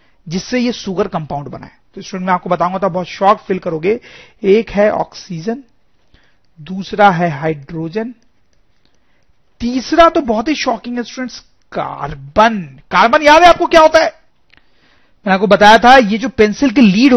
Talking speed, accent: 160 wpm, Indian